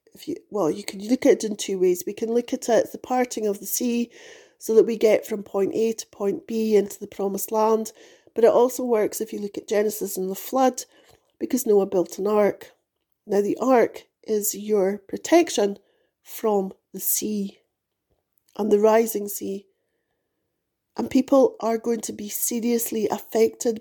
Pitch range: 210-310 Hz